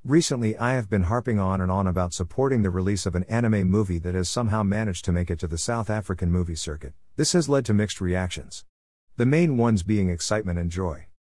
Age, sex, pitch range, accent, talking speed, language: 50-69, male, 85-120 Hz, American, 220 wpm, English